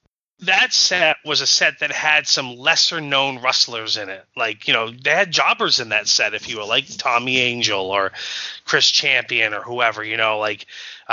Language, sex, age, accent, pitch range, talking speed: English, male, 30-49, American, 115-145 Hz, 200 wpm